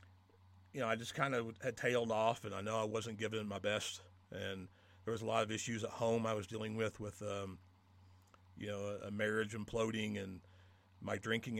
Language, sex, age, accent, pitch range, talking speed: English, male, 40-59, American, 95-115 Hz, 205 wpm